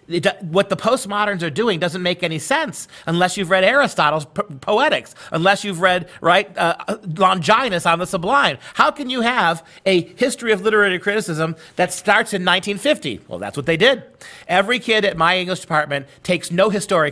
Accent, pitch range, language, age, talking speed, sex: American, 155-200 Hz, English, 40-59, 180 wpm, male